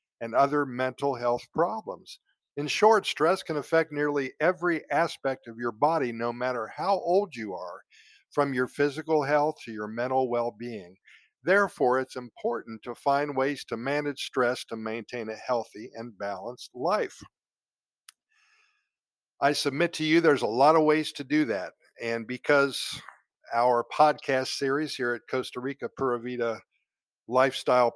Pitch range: 120-155 Hz